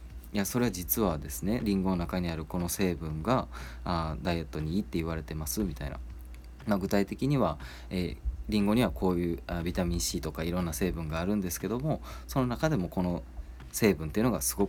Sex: male